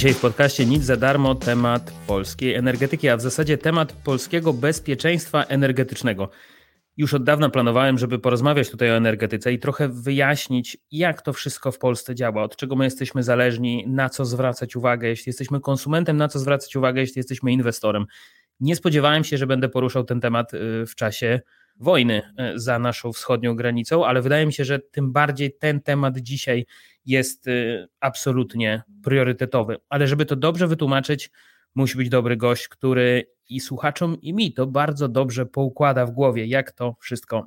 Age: 30-49